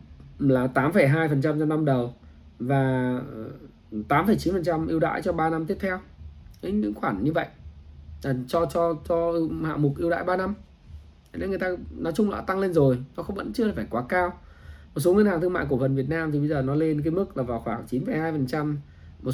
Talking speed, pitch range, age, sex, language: 225 wpm, 110-175 Hz, 20-39, male, Vietnamese